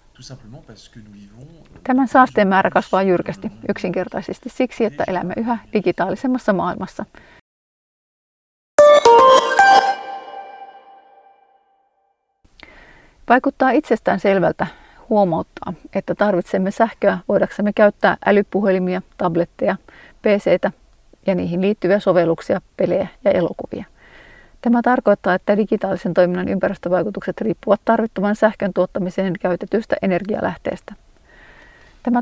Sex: female